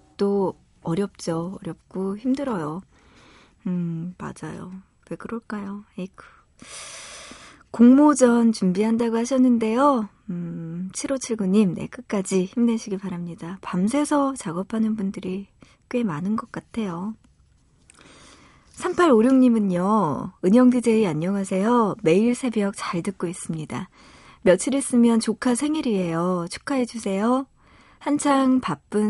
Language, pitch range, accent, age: Korean, 180-240 Hz, native, 40-59